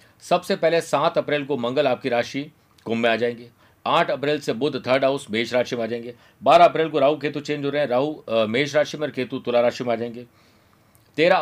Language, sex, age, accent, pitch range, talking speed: Hindi, male, 50-69, native, 115-150 Hz, 225 wpm